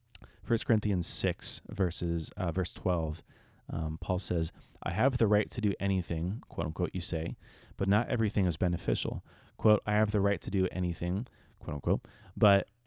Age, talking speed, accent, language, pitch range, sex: 30-49, 155 wpm, American, English, 85-105 Hz, male